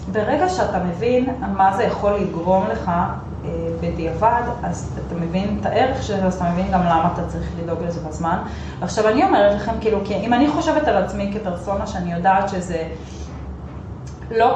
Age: 20-39